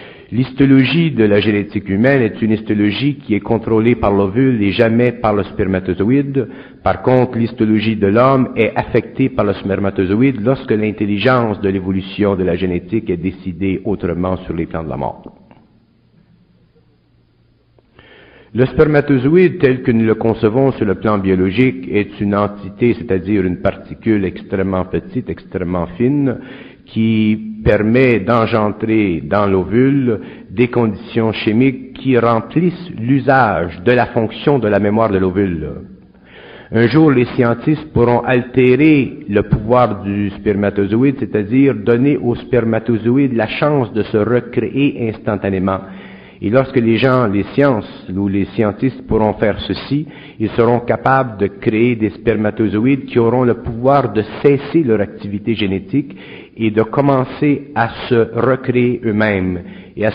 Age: 50-69